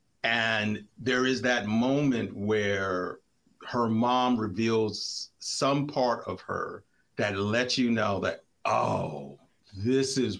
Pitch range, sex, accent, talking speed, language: 100-130 Hz, male, American, 120 wpm, English